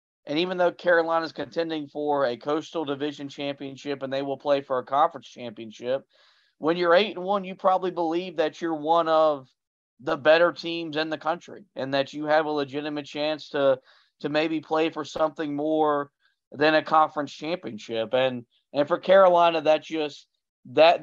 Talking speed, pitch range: 175 wpm, 140-170 Hz